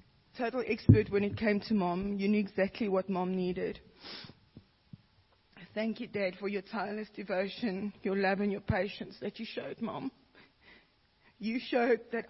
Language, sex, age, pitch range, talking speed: English, female, 40-59, 200-235 Hz, 155 wpm